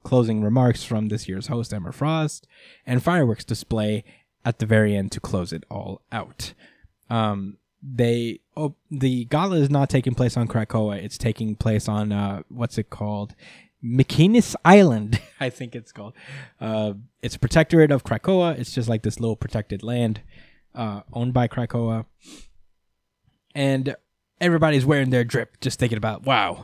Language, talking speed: English, 160 wpm